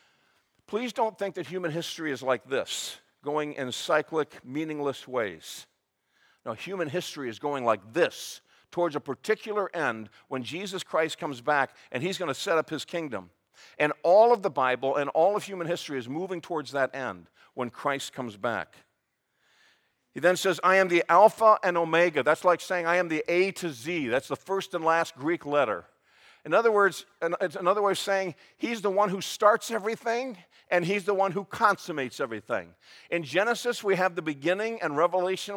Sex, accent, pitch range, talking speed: male, American, 140-190 Hz, 185 wpm